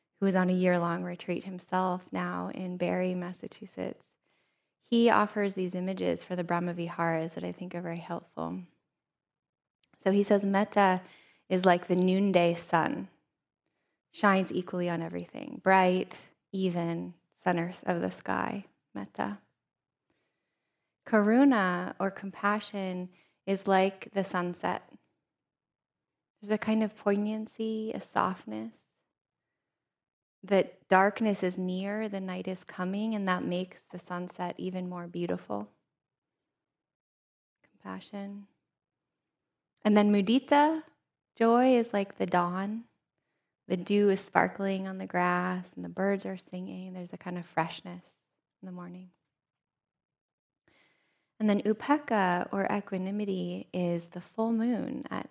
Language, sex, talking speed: English, female, 125 wpm